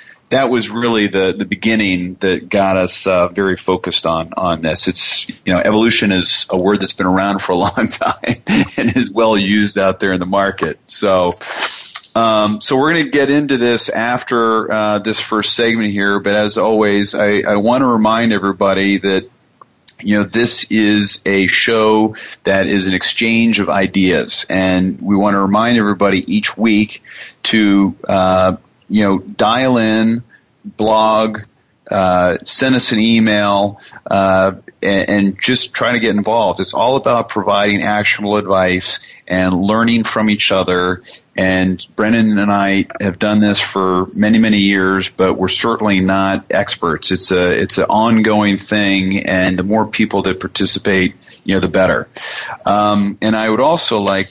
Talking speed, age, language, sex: 170 wpm, 40-59, English, male